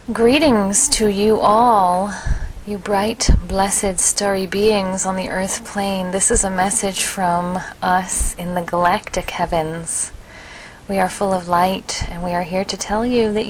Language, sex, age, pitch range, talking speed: English, female, 30-49, 185-225 Hz, 160 wpm